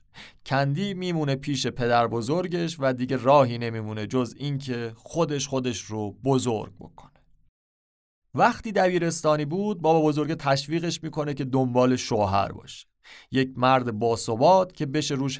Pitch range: 120-165 Hz